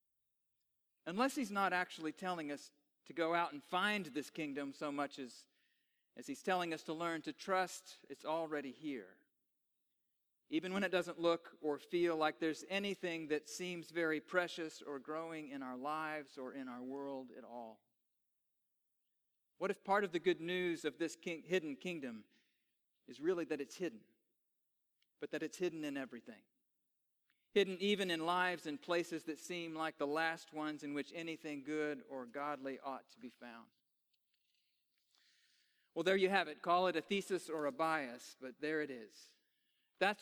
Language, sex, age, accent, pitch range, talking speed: English, male, 40-59, American, 150-195 Hz, 170 wpm